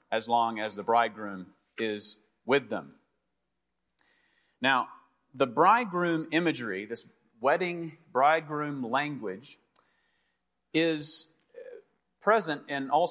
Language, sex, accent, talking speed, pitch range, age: English, male, American, 90 wpm, 120-160 Hz, 40-59